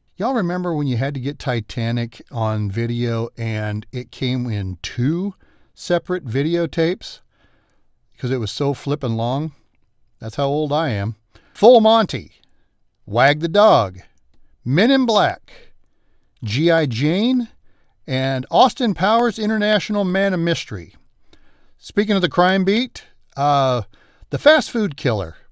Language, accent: Japanese, American